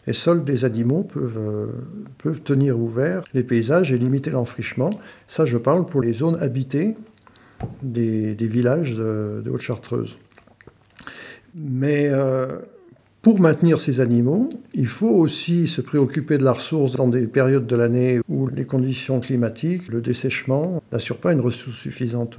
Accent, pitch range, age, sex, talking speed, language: French, 115-155 Hz, 60-79, male, 155 wpm, French